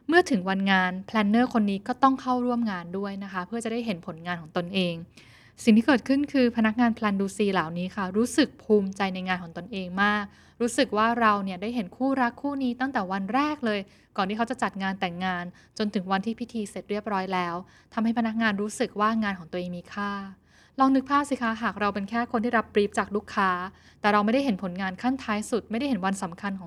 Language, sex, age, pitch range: Thai, female, 10-29, 190-240 Hz